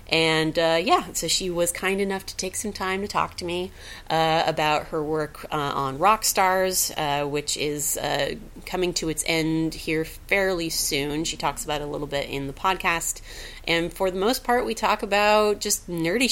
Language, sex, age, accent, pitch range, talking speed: English, female, 30-49, American, 145-185 Hz, 200 wpm